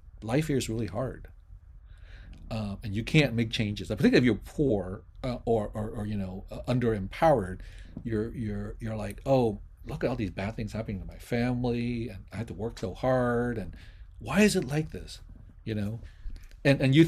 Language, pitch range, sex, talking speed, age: English, 100-140 Hz, male, 200 wpm, 40-59